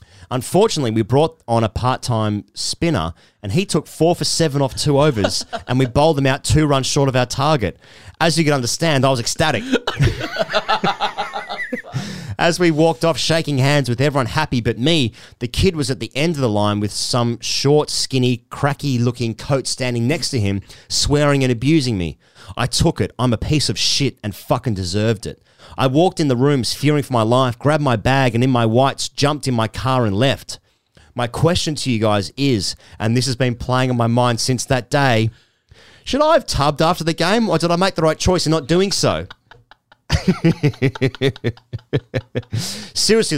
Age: 30-49